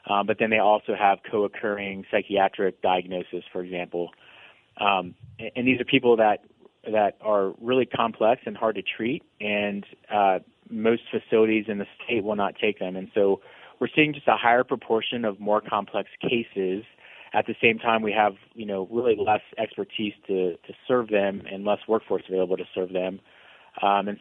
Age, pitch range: 30-49, 100-110 Hz